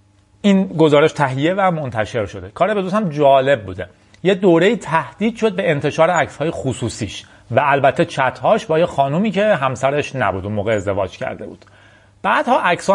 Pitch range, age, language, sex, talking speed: 105-155 Hz, 30-49, Persian, male, 170 wpm